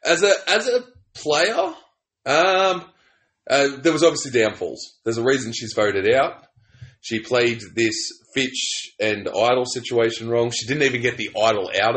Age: 20-39